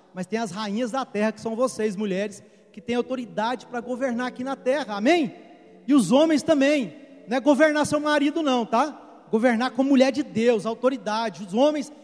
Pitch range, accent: 205-280 Hz, Brazilian